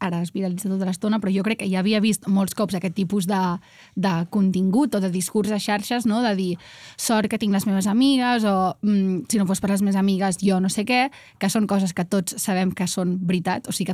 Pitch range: 185-215 Hz